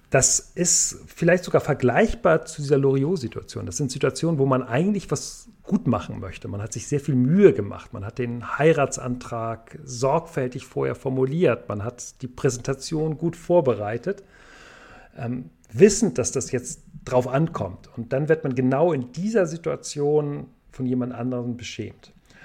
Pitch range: 120-160 Hz